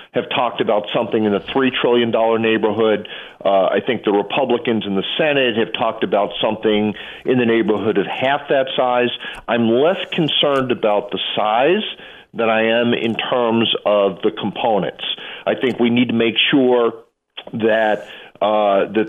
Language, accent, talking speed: English, American, 165 wpm